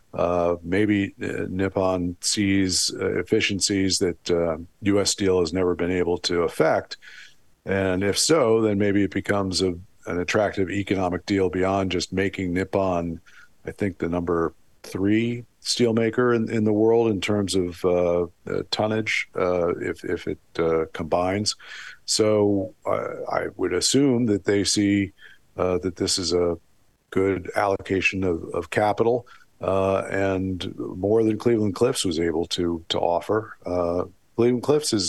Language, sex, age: English, male, 50-69